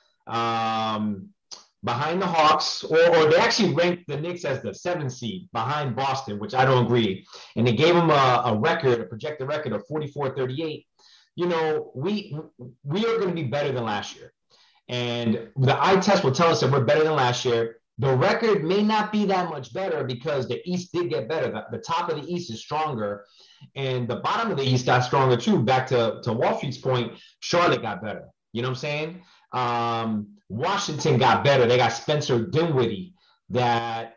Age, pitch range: 30-49, 120-185 Hz